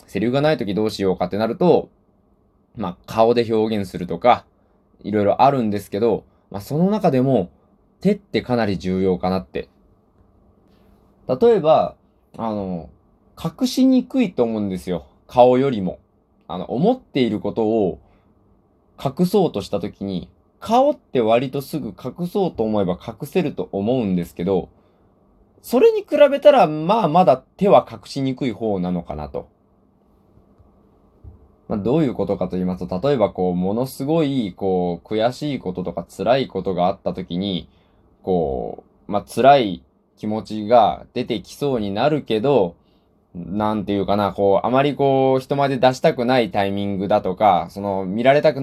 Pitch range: 95-145 Hz